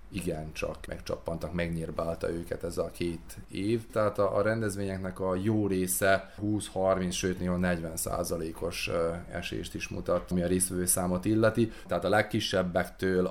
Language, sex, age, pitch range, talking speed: Hungarian, male, 30-49, 80-100 Hz, 130 wpm